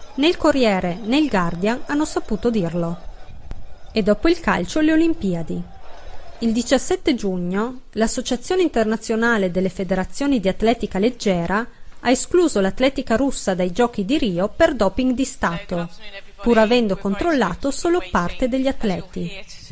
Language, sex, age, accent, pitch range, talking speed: Italian, female, 30-49, native, 185-270 Hz, 135 wpm